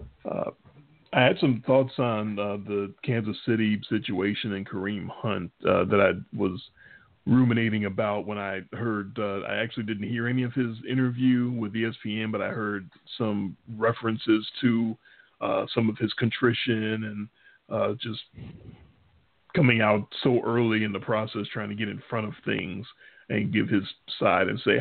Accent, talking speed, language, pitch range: American, 165 wpm, English, 105-125 Hz